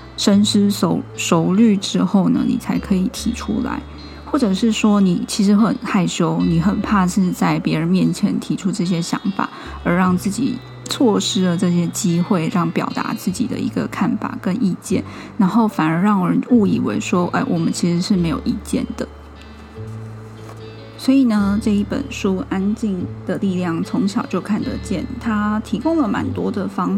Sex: female